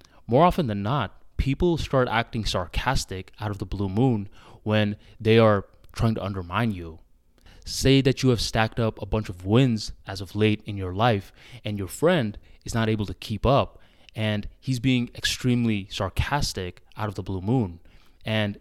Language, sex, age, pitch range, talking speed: English, male, 20-39, 95-120 Hz, 180 wpm